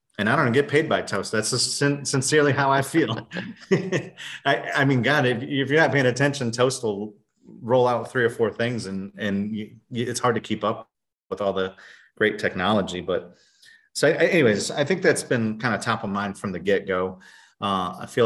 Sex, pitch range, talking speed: male, 95-125 Hz, 205 wpm